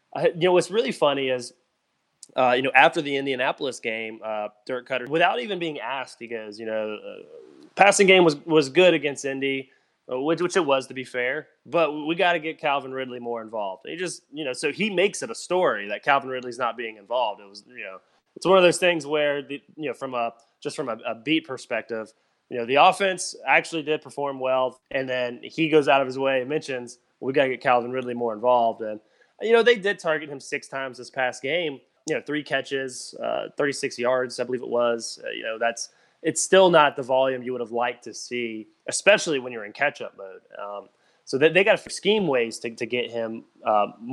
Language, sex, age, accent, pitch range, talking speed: English, male, 20-39, American, 120-155 Hz, 230 wpm